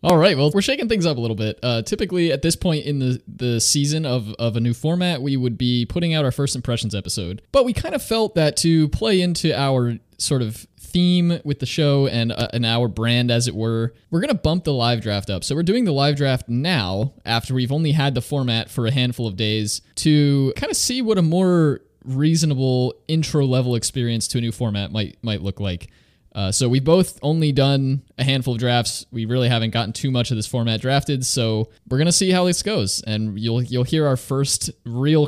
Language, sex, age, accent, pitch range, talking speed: English, male, 20-39, American, 115-145 Hz, 230 wpm